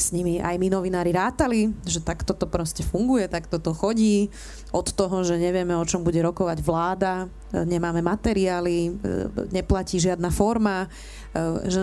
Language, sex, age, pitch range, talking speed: Slovak, female, 20-39, 175-205 Hz, 145 wpm